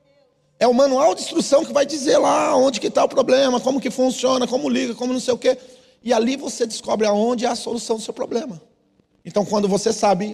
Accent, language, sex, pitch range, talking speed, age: Brazilian, Portuguese, male, 215-265 Hz, 225 wpm, 40-59